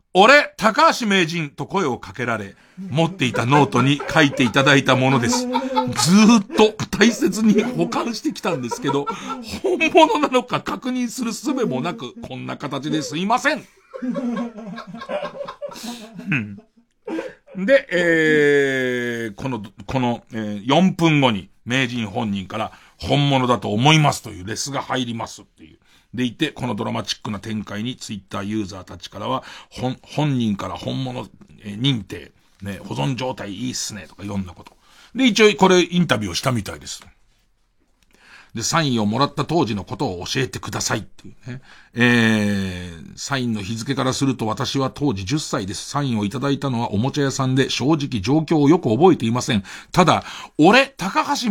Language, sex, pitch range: Japanese, male, 115-170 Hz